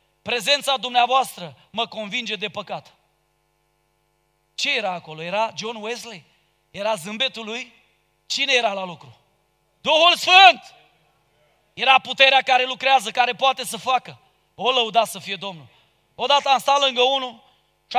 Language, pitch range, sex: Romanian, 225-285 Hz, male